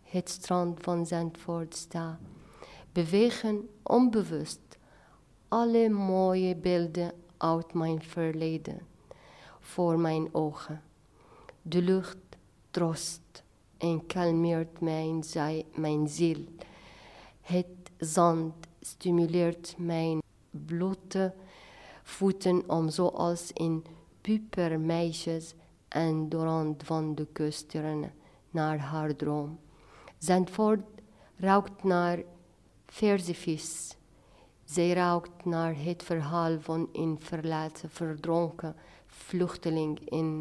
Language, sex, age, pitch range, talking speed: Dutch, female, 50-69, 155-180 Hz, 90 wpm